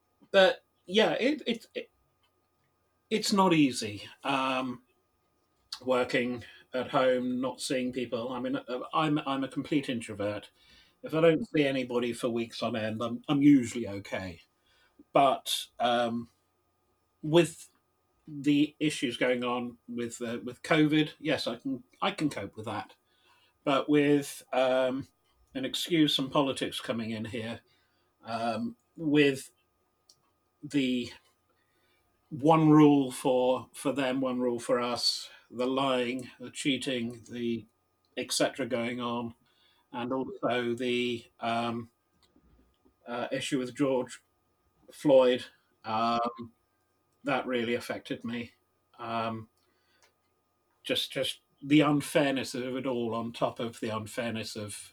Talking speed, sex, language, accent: 125 wpm, male, English, British